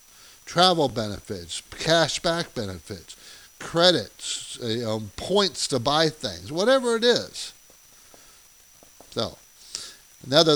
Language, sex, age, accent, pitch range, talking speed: English, male, 60-79, American, 125-165 Hz, 85 wpm